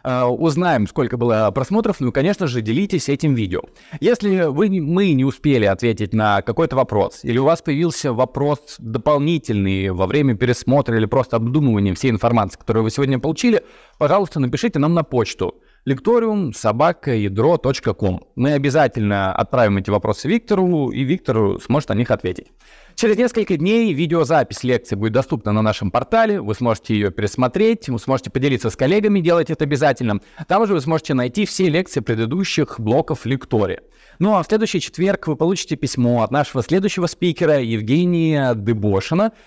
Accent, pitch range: native, 115-175 Hz